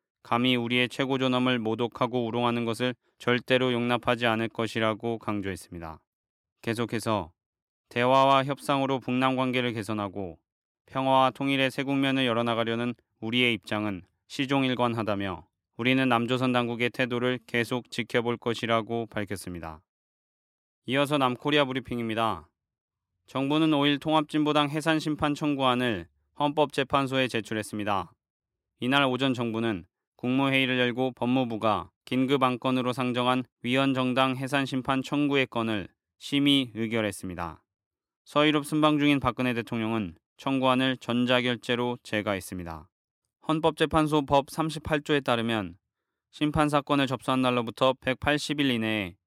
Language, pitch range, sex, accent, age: Korean, 110-135 Hz, male, native, 20-39